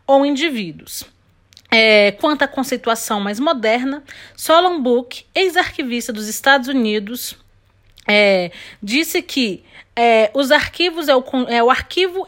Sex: female